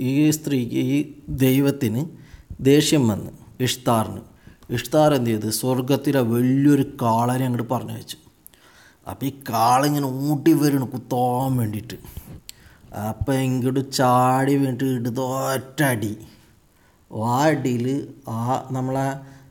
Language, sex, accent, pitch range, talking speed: Malayalam, male, native, 115-140 Hz, 95 wpm